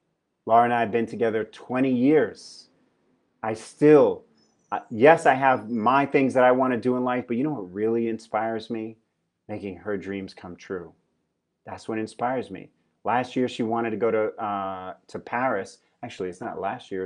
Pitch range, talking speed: 100-115 Hz, 185 wpm